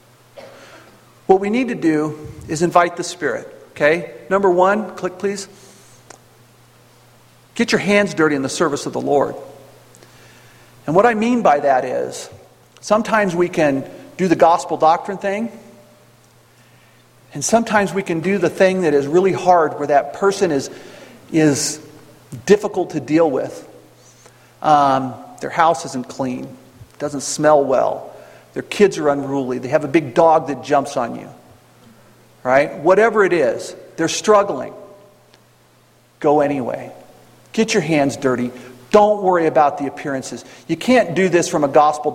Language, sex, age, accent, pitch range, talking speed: English, male, 50-69, American, 145-205 Hz, 150 wpm